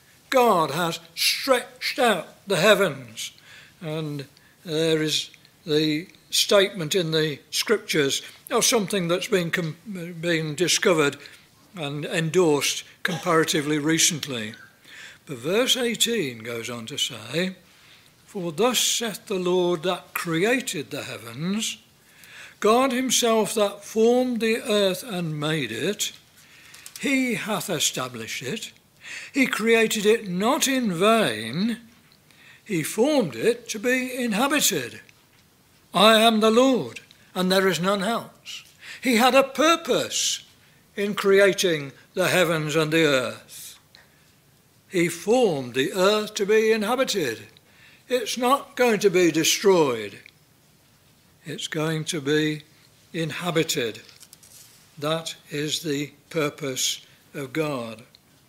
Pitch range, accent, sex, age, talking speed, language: 155-220 Hz, British, male, 60-79, 115 wpm, English